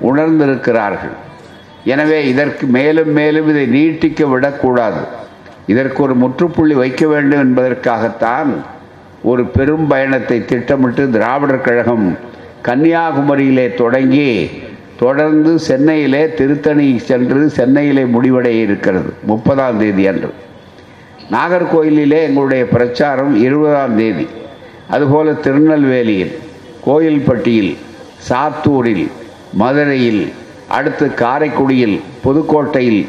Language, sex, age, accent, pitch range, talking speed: Tamil, male, 60-79, native, 125-150 Hz, 80 wpm